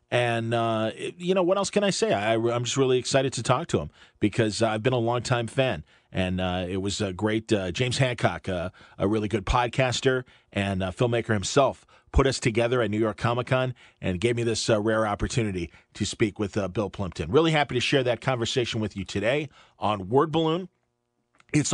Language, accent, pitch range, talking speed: English, American, 115-145 Hz, 205 wpm